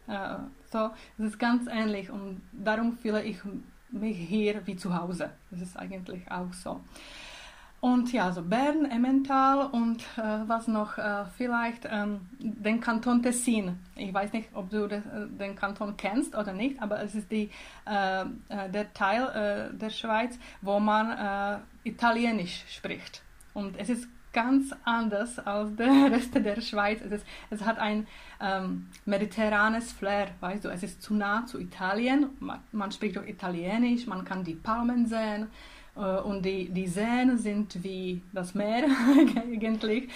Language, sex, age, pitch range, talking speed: Czech, female, 20-39, 200-235 Hz, 150 wpm